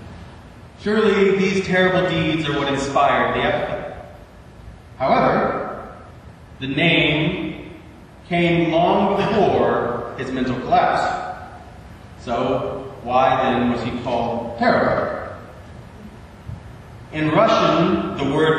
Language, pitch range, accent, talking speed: English, 115-155 Hz, American, 95 wpm